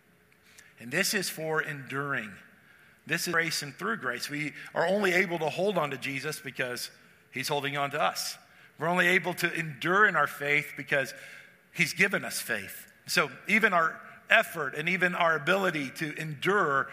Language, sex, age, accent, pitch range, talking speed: English, male, 50-69, American, 140-185 Hz, 175 wpm